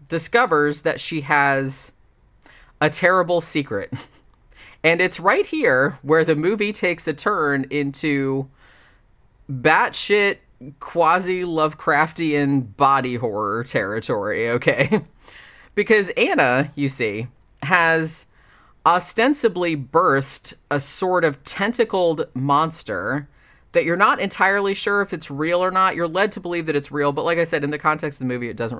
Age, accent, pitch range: 30-49, American, 135-175 Hz